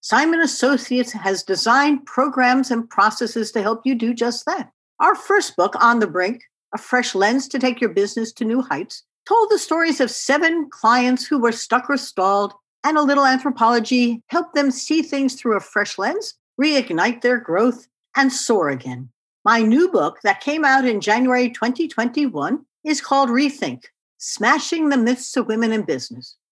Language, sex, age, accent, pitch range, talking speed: English, female, 60-79, American, 235-310 Hz, 175 wpm